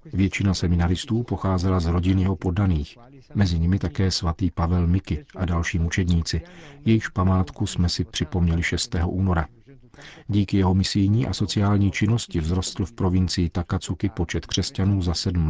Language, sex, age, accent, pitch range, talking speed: Czech, male, 50-69, native, 90-100 Hz, 145 wpm